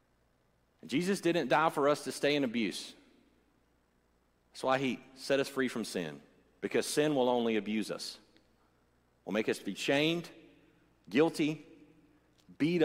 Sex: male